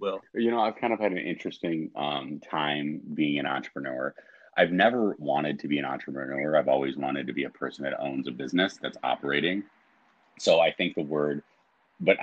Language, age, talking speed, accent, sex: English, 30-49, 195 wpm, American, male